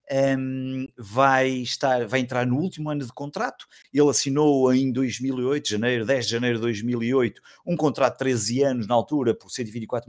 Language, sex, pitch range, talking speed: Portuguese, male, 120-140 Hz, 155 wpm